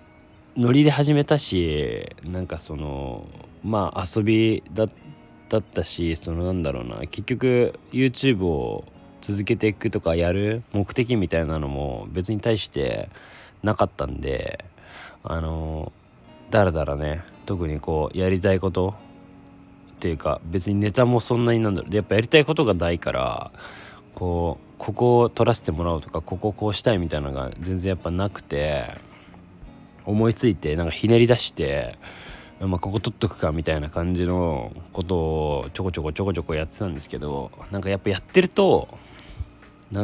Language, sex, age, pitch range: Japanese, male, 20-39, 85-110 Hz